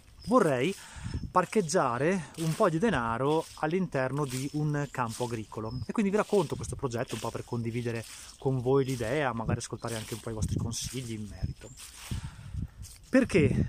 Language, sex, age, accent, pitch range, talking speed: Italian, male, 20-39, native, 115-165 Hz, 155 wpm